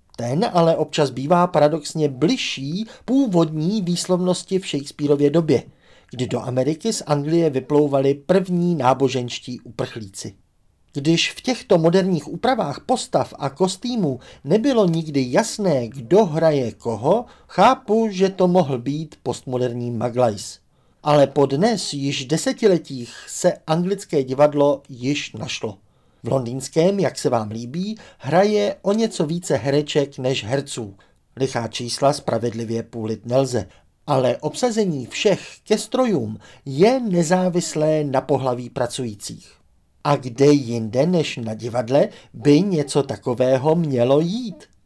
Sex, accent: male, native